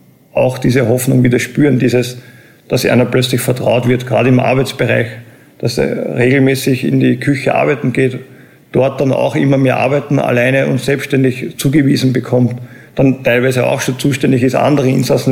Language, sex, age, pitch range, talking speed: German, male, 50-69, 120-130 Hz, 160 wpm